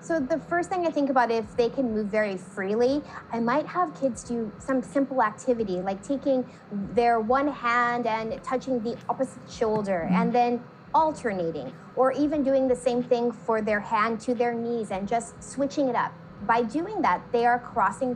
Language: Japanese